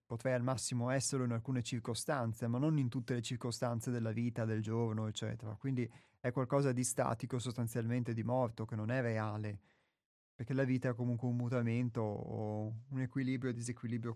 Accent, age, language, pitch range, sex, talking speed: native, 30-49, Italian, 115-135 Hz, male, 180 wpm